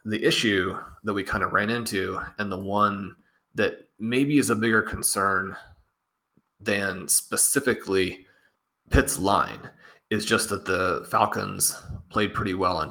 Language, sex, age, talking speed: English, male, 30-49, 140 wpm